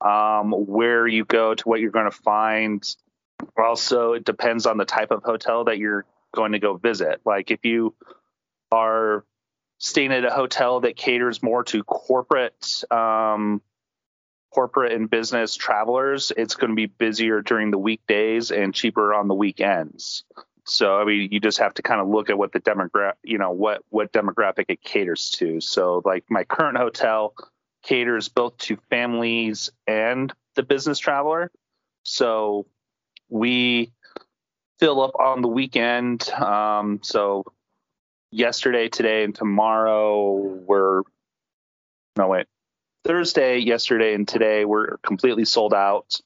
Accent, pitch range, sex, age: American, 105-115 Hz, male, 30-49